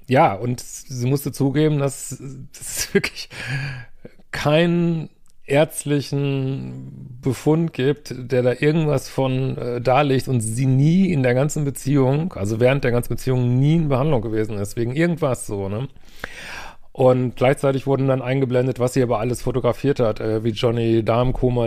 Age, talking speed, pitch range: 40-59, 155 wpm, 115-135 Hz